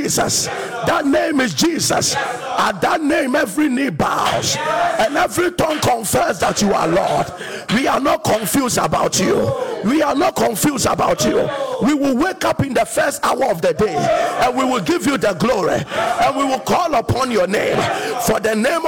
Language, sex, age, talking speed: English, male, 50-69, 190 wpm